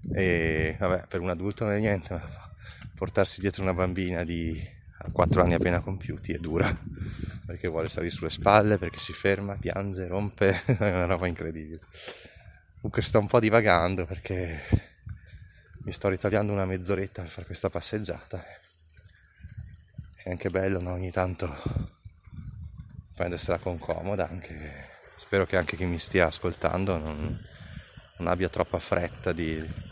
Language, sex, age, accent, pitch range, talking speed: Italian, male, 20-39, native, 85-105 Hz, 145 wpm